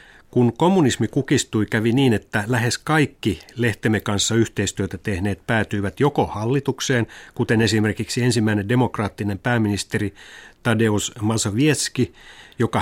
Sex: male